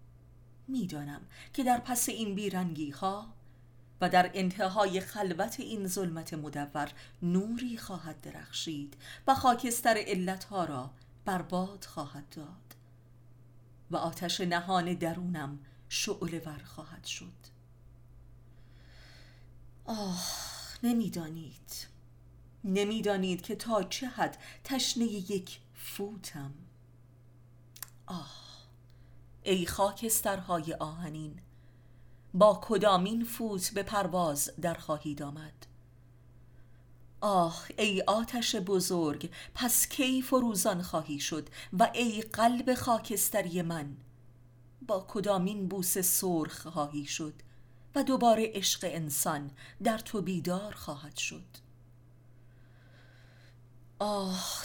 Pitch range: 120-200 Hz